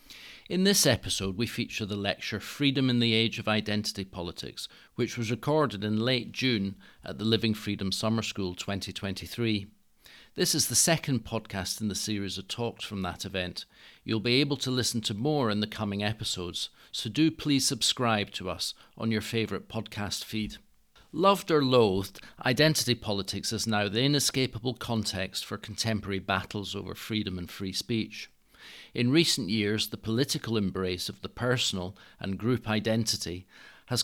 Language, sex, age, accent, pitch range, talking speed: English, male, 50-69, British, 100-120 Hz, 165 wpm